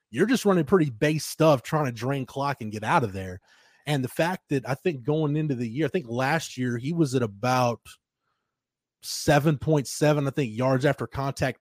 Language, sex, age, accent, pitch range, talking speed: English, male, 30-49, American, 120-155 Hz, 200 wpm